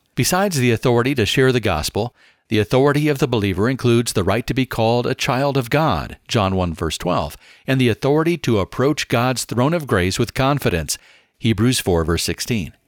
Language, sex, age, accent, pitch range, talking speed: English, male, 50-69, American, 110-135 Hz, 190 wpm